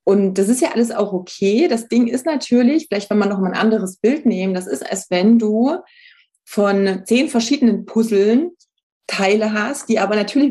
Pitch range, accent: 195-235 Hz, German